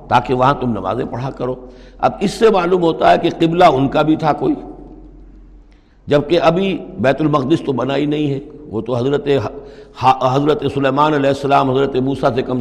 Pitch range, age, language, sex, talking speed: 130-170 Hz, 60-79, Urdu, male, 190 wpm